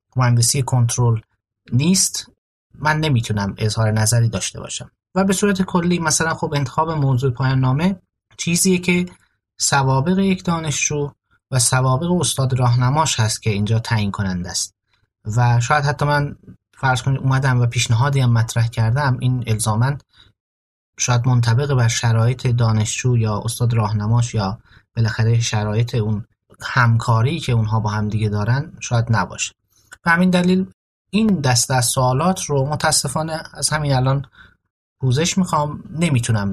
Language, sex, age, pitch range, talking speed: Persian, male, 30-49, 115-150 Hz, 135 wpm